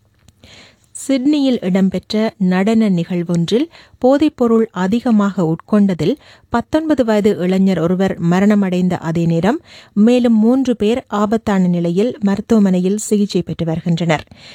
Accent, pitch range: native, 140-210 Hz